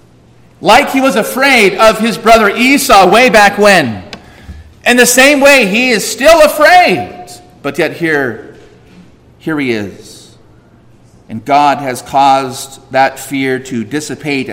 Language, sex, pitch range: English, male, 135-185 Hz